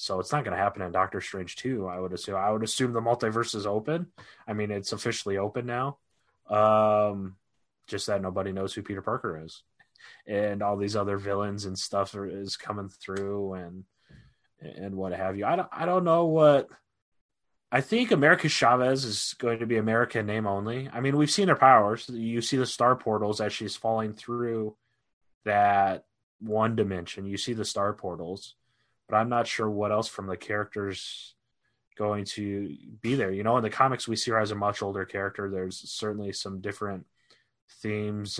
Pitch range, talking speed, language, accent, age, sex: 100-120 Hz, 190 wpm, English, American, 20-39, male